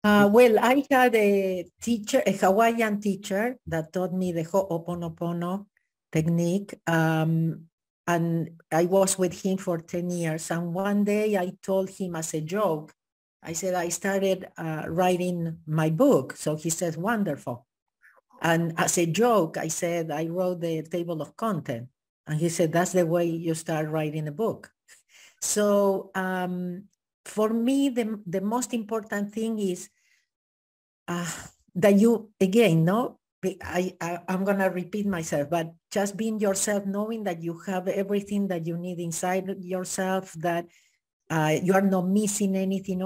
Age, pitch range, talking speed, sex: 50-69, 165-200 Hz, 155 wpm, female